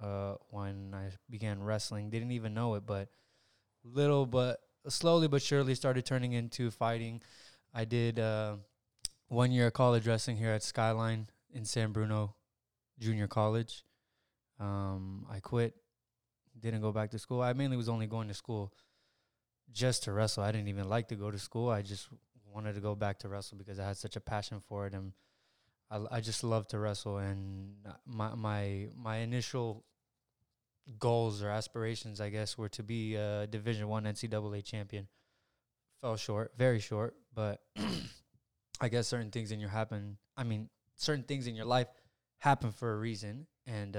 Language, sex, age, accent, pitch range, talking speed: English, male, 20-39, American, 100-115 Hz, 175 wpm